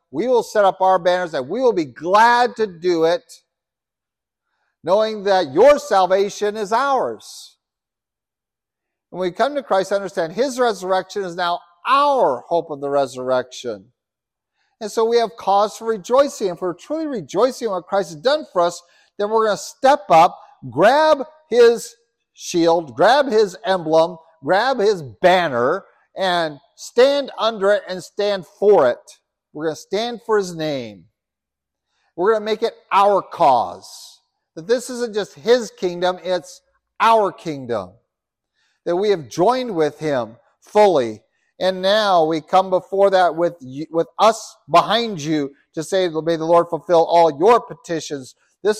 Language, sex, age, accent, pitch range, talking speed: English, male, 50-69, American, 165-220 Hz, 155 wpm